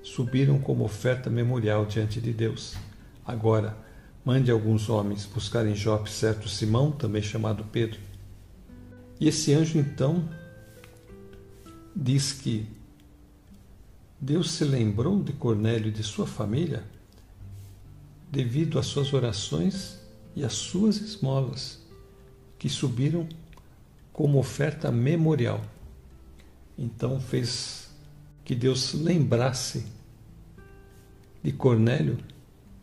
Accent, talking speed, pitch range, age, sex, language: Brazilian, 95 wpm, 105-135 Hz, 60-79, male, Portuguese